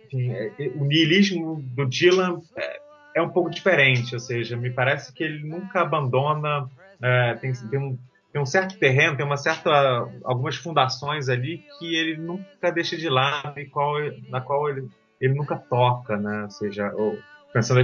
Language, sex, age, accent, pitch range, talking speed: Portuguese, male, 30-49, Brazilian, 115-155 Hz, 160 wpm